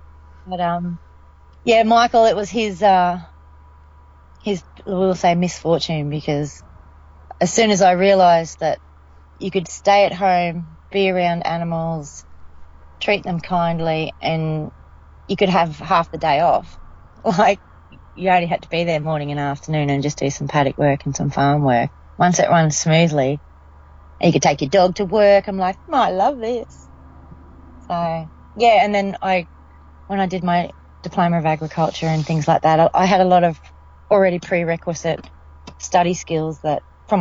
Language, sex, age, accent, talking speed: English, female, 30-49, Australian, 165 wpm